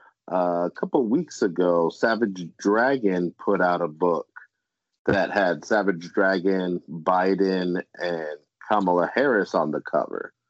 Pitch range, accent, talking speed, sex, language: 85-105 Hz, American, 130 wpm, male, English